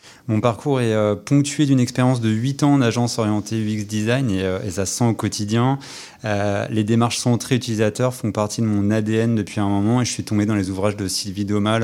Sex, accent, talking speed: male, French, 230 wpm